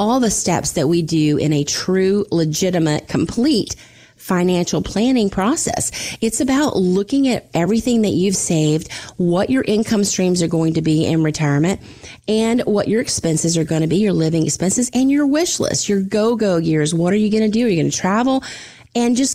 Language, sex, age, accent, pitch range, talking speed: English, female, 30-49, American, 165-220 Hz, 190 wpm